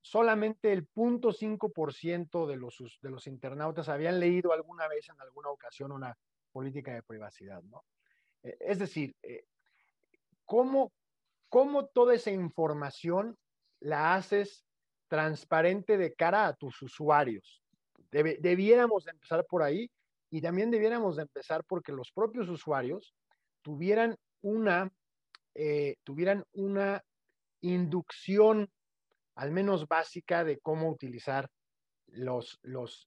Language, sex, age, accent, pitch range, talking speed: Spanish, male, 40-59, Mexican, 145-195 Hz, 120 wpm